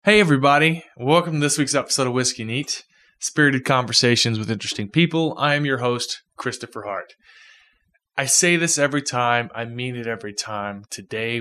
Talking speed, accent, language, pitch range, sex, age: 170 wpm, American, English, 110-145 Hz, male, 20-39